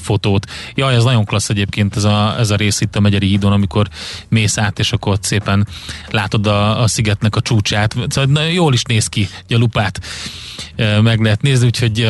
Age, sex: 30-49, male